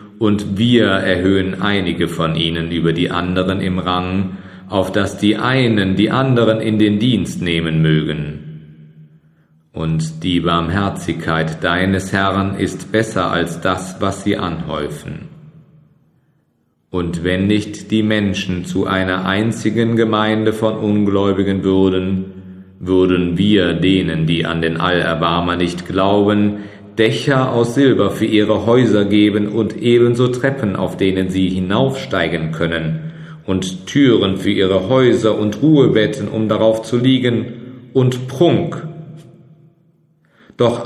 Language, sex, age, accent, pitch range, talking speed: German, male, 40-59, German, 90-110 Hz, 125 wpm